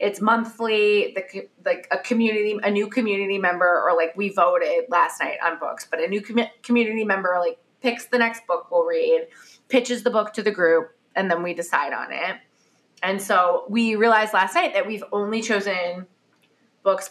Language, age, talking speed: English, 20-39, 180 wpm